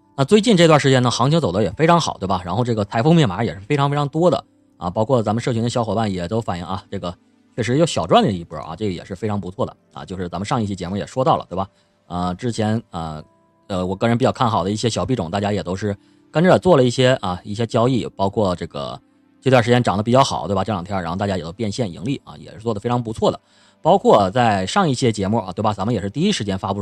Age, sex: 30-49, male